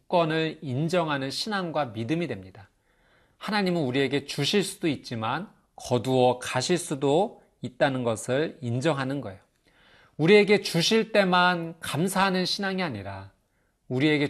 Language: Korean